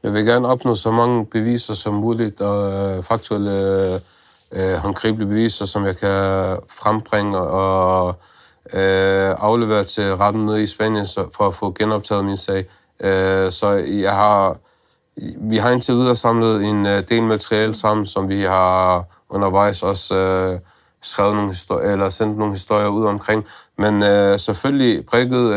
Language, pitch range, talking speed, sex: Danish, 100-110 Hz, 155 wpm, male